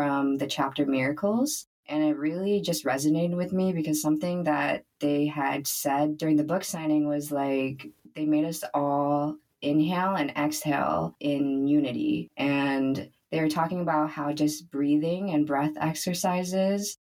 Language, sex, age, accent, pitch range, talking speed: English, female, 20-39, American, 140-165 Hz, 150 wpm